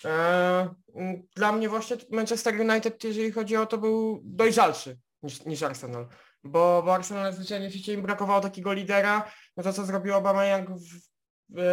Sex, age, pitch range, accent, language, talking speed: male, 20-39, 185-205 Hz, native, Polish, 160 wpm